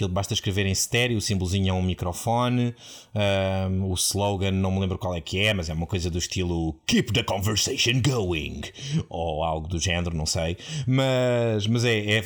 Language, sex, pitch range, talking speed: Portuguese, male, 100-135 Hz, 190 wpm